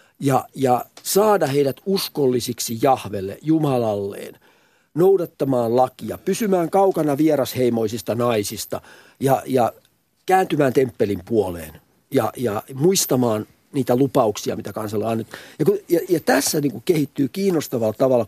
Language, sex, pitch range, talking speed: Finnish, male, 115-155 Hz, 120 wpm